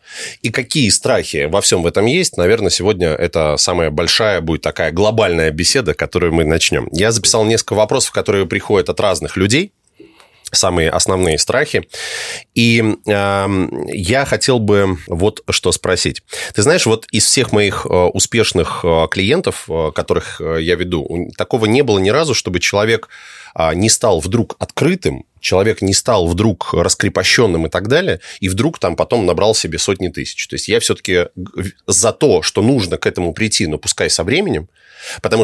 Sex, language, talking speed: male, Russian, 155 wpm